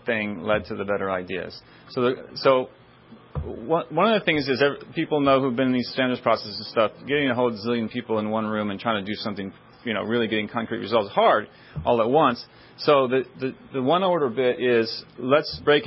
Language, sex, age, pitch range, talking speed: English, male, 40-59, 115-145 Hz, 210 wpm